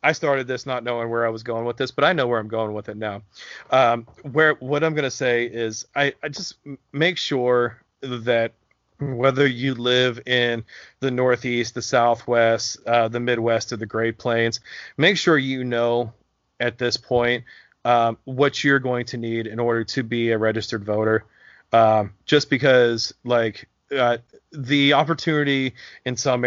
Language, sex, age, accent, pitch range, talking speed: English, male, 30-49, American, 115-130 Hz, 175 wpm